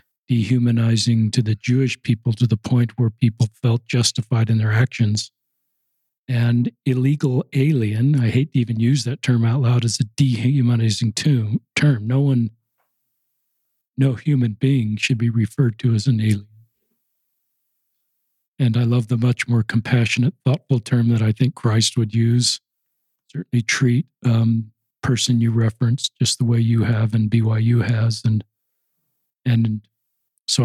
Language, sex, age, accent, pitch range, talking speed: English, male, 50-69, American, 115-130 Hz, 150 wpm